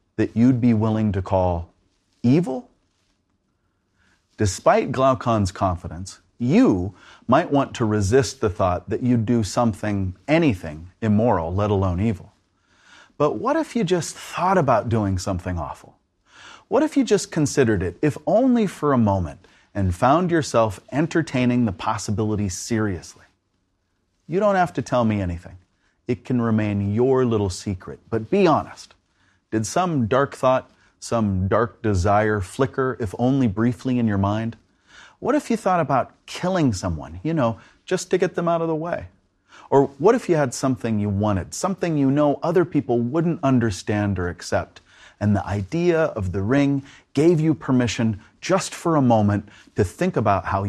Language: English